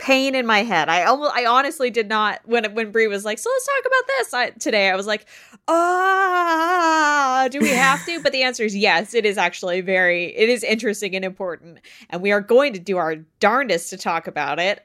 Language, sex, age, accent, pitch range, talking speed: English, female, 20-39, American, 170-250 Hz, 220 wpm